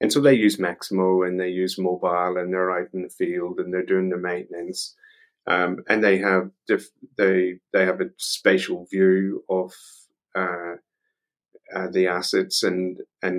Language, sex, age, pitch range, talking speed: English, male, 30-49, 90-110 Hz, 170 wpm